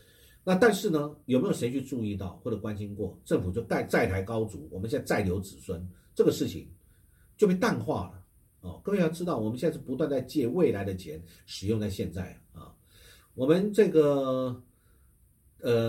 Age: 50-69